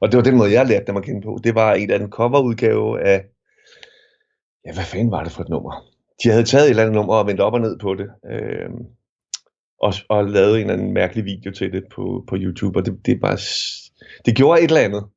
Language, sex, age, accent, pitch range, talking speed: Danish, male, 30-49, native, 110-150 Hz, 250 wpm